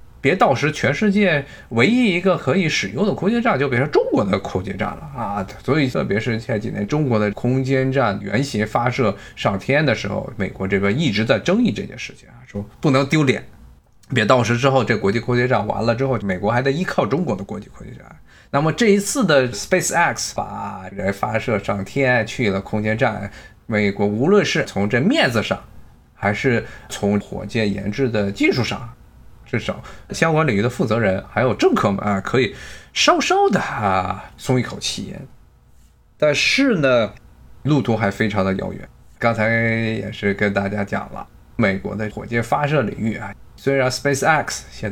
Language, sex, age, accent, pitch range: Chinese, male, 20-39, native, 100-130 Hz